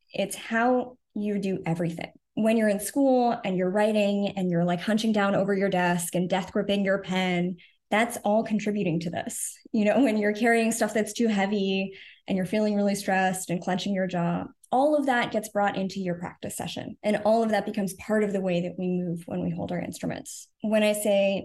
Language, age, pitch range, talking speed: English, 20-39, 185-225 Hz, 215 wpm